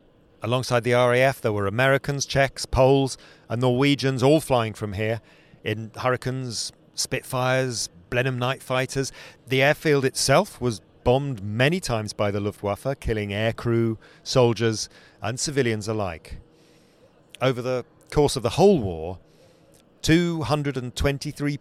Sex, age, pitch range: male, 40-59, 110-150 Hz